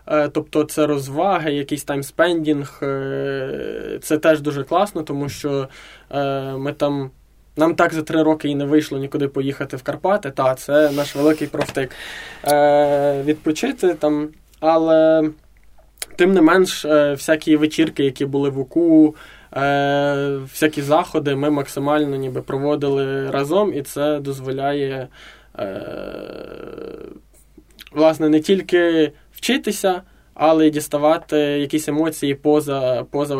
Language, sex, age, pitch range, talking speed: Ukrainian, male, 20-39, 140-160 Hz, 115 wpm